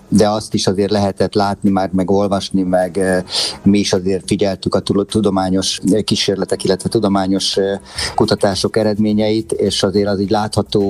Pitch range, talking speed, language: 95-100 Hz, 145 wpm, Hungarian